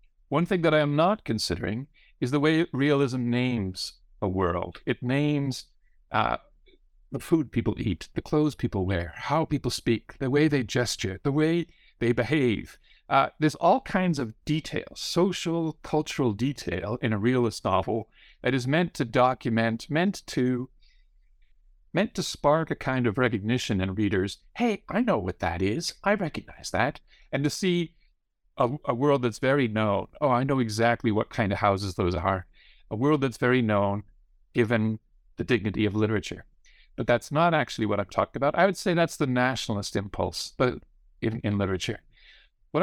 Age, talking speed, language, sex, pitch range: 60-79, 170 wpm, English, male, 110-150 Hz